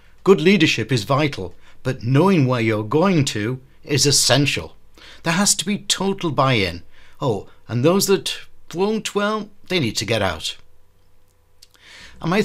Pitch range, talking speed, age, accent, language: 110-160 Hz, 150 wpm, 60-79, British, English